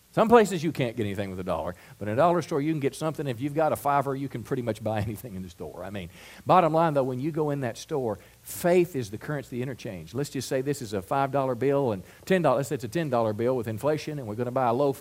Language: English